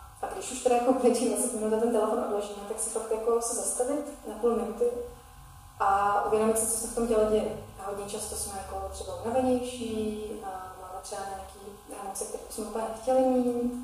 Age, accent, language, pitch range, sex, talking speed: 30-49, native, Czech, 200-240 Hz, female, 200 wpm